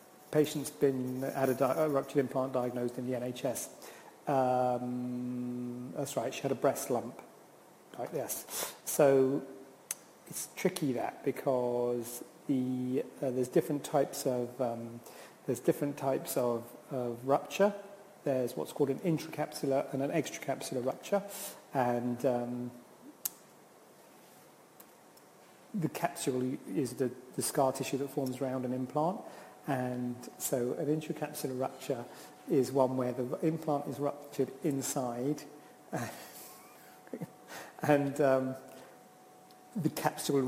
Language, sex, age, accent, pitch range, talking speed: English, male, 40-59, British, 125-145 Hz, 120 wpm